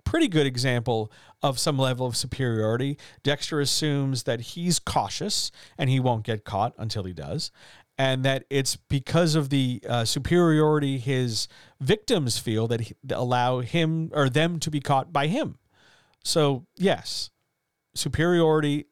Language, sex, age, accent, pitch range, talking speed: English, male, 40-59, American, 115-140 Hz, 145 wpm